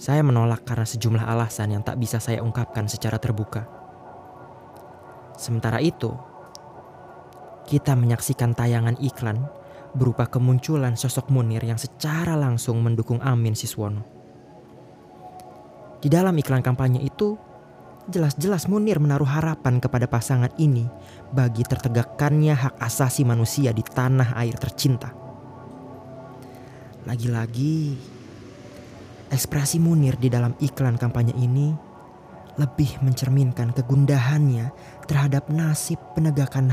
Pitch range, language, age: 115-140 Hz, Indonesian, 20-39